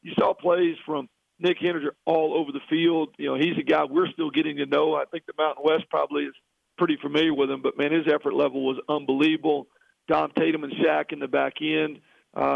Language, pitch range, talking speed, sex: English, 145-170 Hz, 225 wpm, male